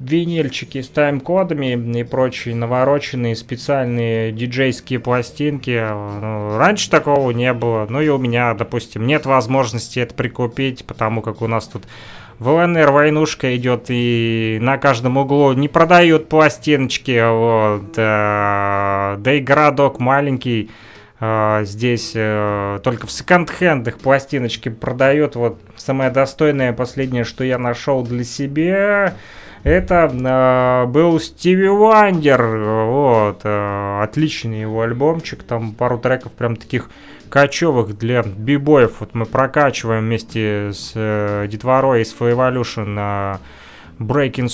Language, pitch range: Russian, 110-145 Hz